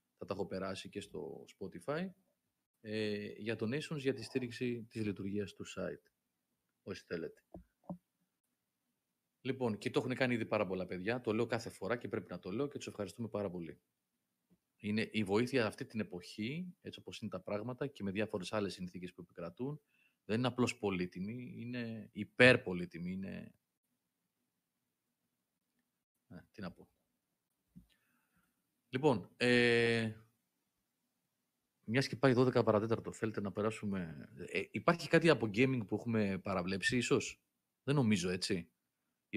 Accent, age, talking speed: native, 30-49, 145 wpm